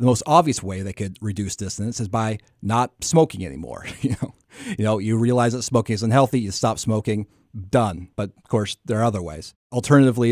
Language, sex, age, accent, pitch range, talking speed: English, male, 30-49, American, 100-130 Hz, 200 wpm